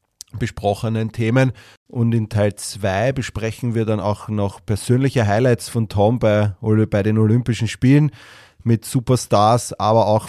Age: 30-49